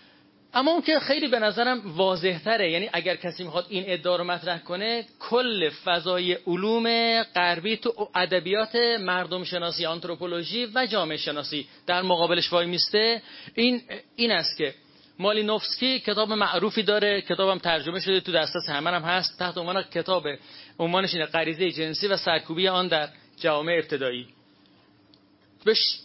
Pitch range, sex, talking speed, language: 170-225 Hz, male, 145 wpm, Persian